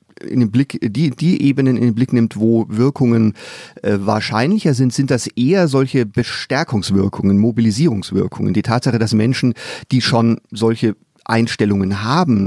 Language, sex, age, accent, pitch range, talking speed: German, male, 40-59, German, 110-135 Hz, 145 wpm